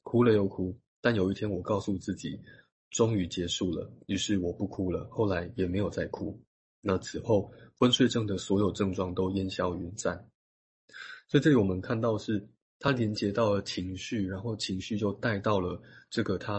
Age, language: 20-39, Chinese